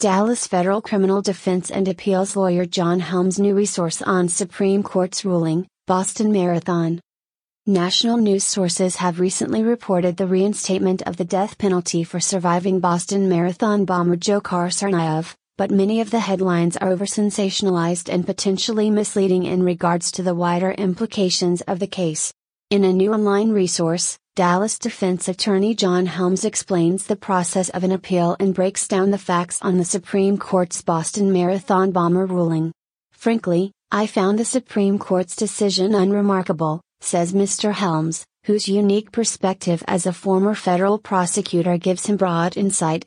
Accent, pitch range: American, 180-200 Hz